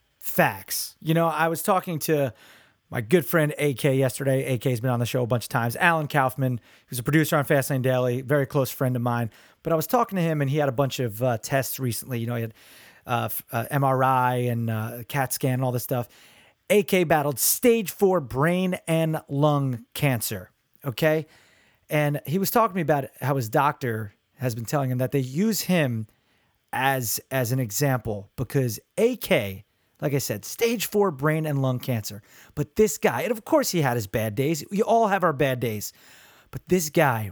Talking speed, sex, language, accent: 205 wpm, male, English, American